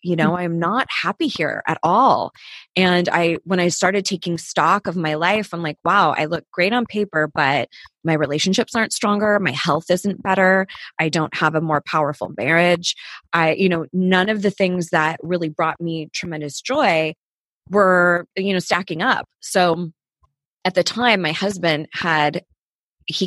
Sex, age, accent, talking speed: female, 20-39, American, 180 wpm